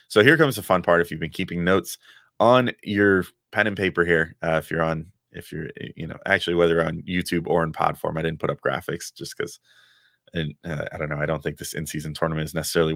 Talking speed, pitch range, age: 250 wpm, 85-110 Hz, 30-49